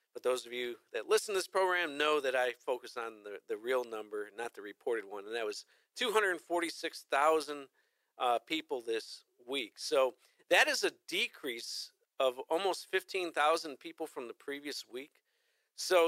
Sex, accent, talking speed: male, American, 160 wpm